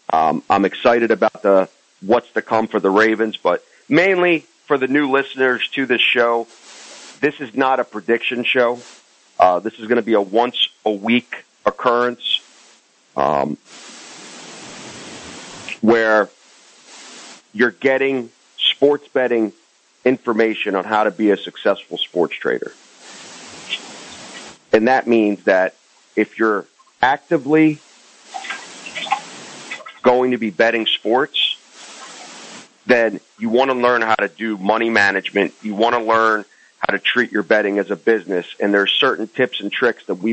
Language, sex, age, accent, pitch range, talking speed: English, male, 40-59, American, 105-125 Hz, 140 wpm